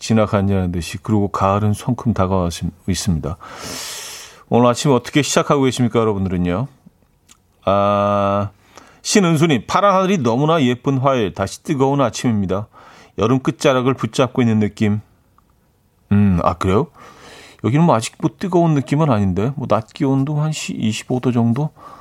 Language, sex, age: Korean, male, 40-59